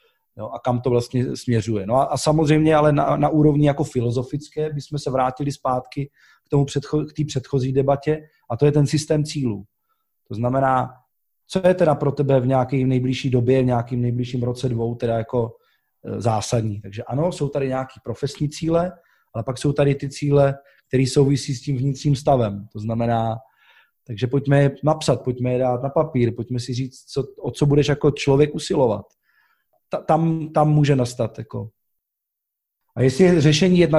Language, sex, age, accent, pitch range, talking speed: Czech, male, 20-39, native, 125-150 Hz, 175 wpm